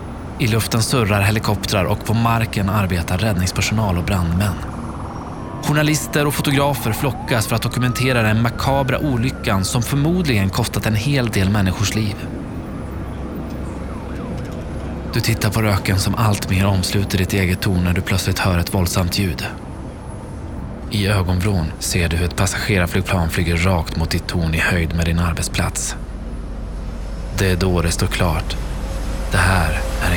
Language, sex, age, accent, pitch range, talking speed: Swedish, male, 20-39, native, 90-115 Hz, 145 wpm